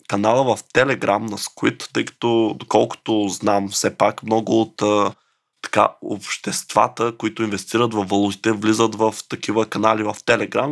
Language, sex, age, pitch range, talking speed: Bulgarian, male, 20-39, 105-130 Hz, 140 wpm